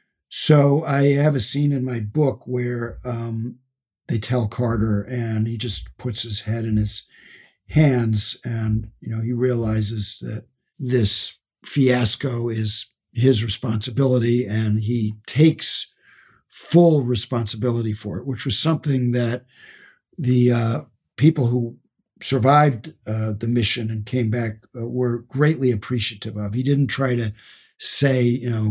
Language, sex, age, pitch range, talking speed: English, male, 60-79, 115-140 Hz, 140 wpm